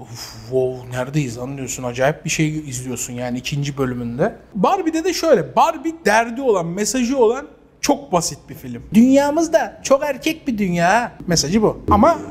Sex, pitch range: male, 165-250 Hz